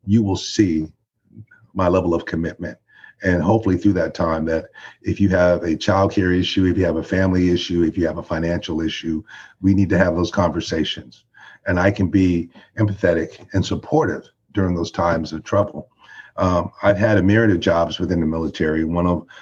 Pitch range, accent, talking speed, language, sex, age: 85-100 Hz, American, 190 wpm, English, male, 50-69